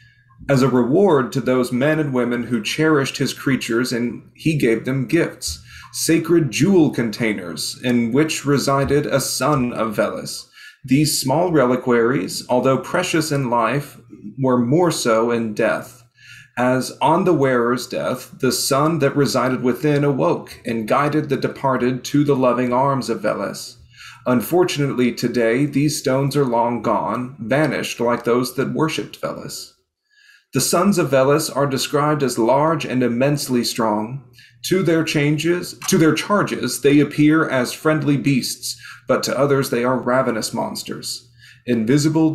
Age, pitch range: 40-59, 120-150 Hz